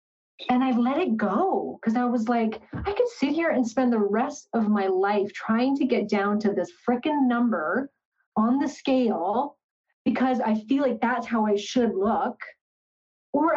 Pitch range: 205-255 Hz